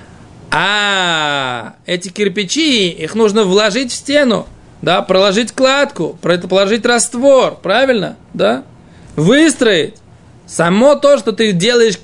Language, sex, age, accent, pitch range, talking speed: Russian, male, 20-39, native, 170-230 Hz, 115 wpm